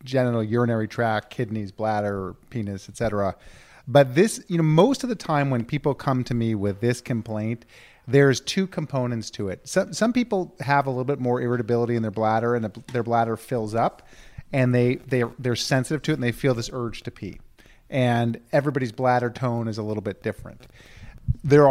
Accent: American